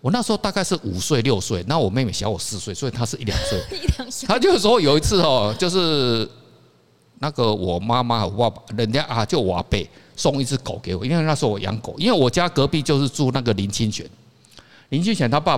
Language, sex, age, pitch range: Chinese, male, 50-69, 100-135 Hz